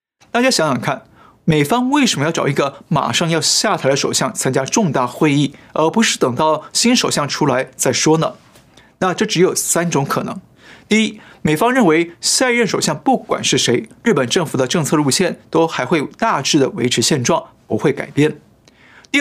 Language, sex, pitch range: Chinese, male, 145-215 Hz